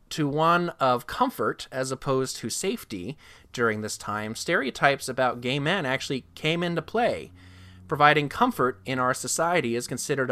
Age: 20-39